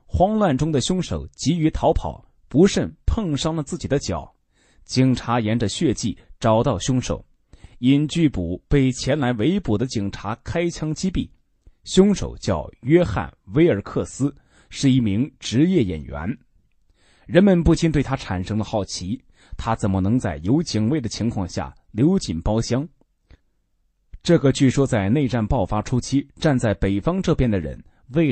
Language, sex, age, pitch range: Chinese, male, 20-39, 105-150 Hz